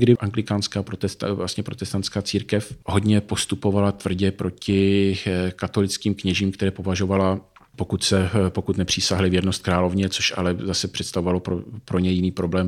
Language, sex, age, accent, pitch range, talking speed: Czech, male, 40-59, native, 90-100 Hz, 135 wpm